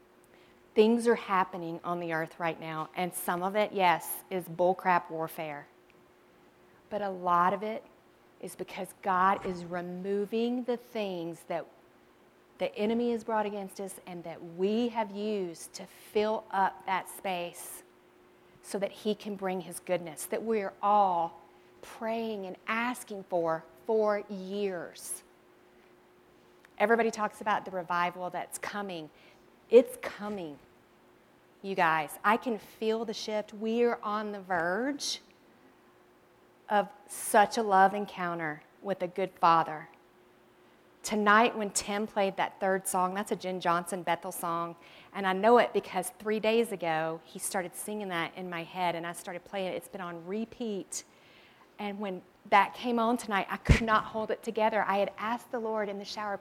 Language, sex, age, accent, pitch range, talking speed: English, female, 40-59, American, 175-215 Hz, 155 wpm